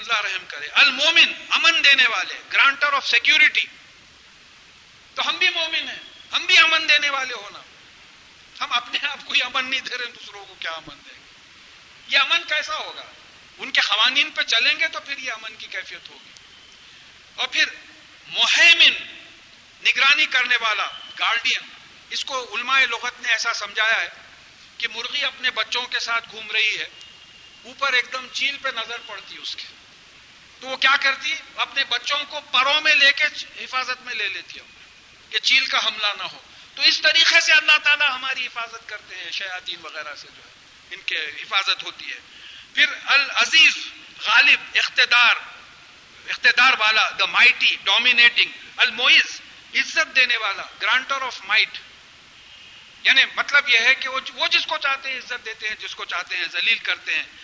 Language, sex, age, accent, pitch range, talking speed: English, male, 50-69, Indian, 230-295 Hz, 140 wpm